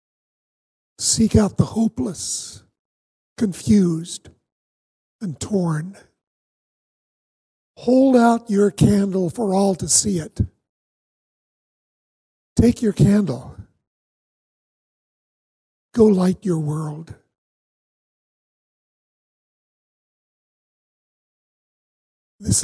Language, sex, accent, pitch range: English, male, American, 150-210 Hz